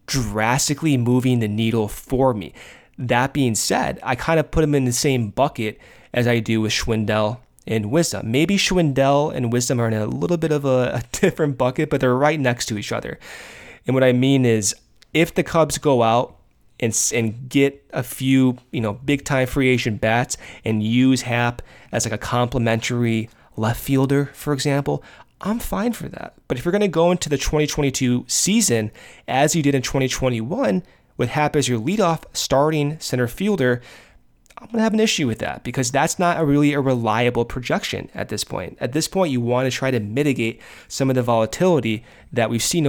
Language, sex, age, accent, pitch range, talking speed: English, male, 20-39, American, 120-150 Hz, 195 wpm